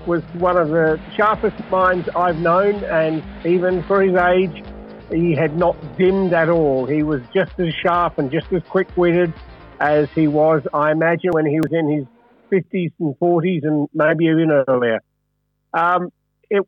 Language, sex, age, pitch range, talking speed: English, male, 50-69, 155-185 Hz, 170 wpm